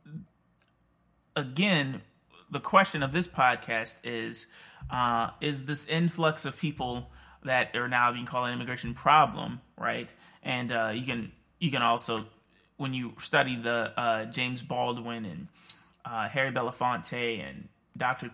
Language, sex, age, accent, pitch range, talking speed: English, male, 30-49, American, 115-145 Hz, 135 wpm